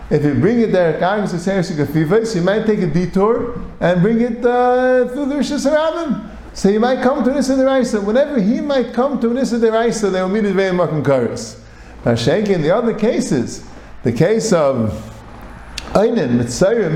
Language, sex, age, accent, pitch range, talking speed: English, male, 50-69, American, 150-225 Hz, 205 wpm